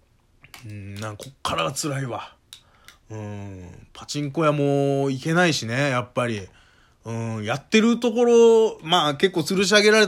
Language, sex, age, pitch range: Japanese, male, 20-39, 115-175 Hz